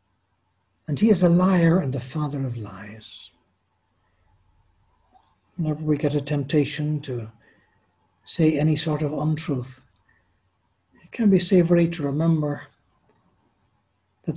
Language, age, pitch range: English, 60-79, 95-150 Hz